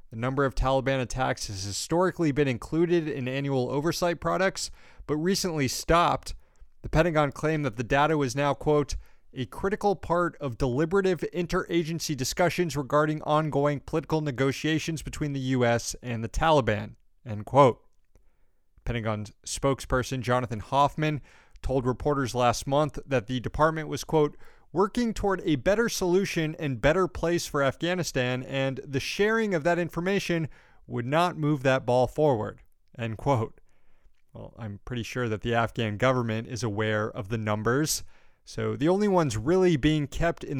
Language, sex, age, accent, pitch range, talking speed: English, male, 30-49, American, 115-155 Hz, 150 wpm